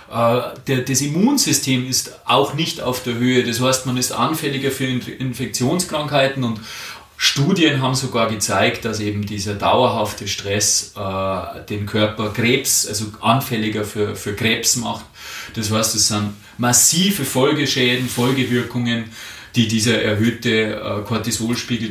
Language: German